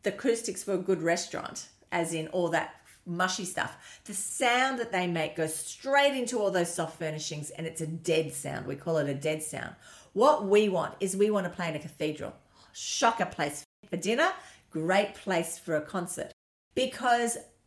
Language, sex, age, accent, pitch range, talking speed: English, female, 40-59, Australian, 175-225 Hz, 190 wpm